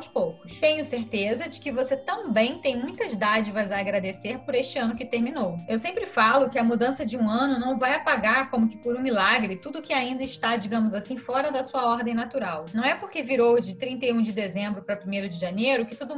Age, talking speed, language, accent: 20-39, 220 wpm, Portuguese, Brazilian